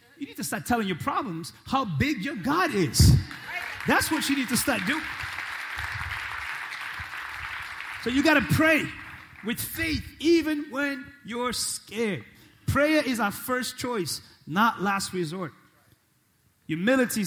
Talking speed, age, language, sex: 135 wpm, 30-49, English, male